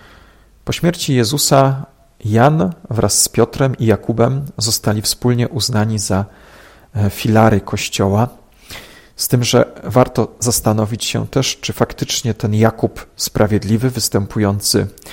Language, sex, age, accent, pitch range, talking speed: Polish, male, 40-59, native, 105-130 Hz, 110 wpm